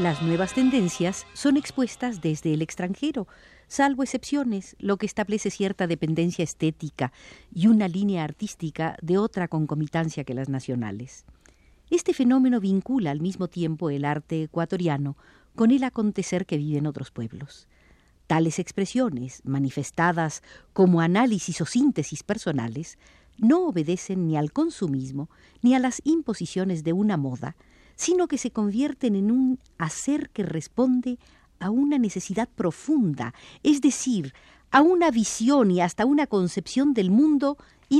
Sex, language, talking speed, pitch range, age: female, Spanish, 135 wpm, 160-250 Hz, 50-69